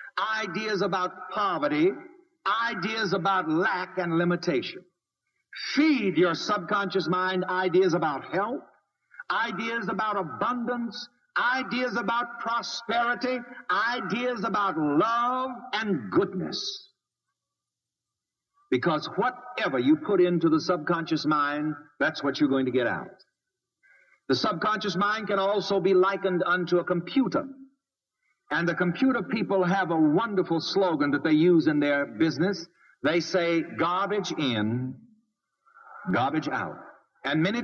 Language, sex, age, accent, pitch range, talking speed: English, male, 60-79, American, 170-245 Hz, 115 wpm